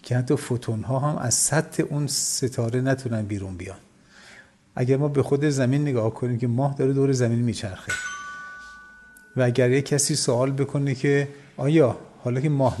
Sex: male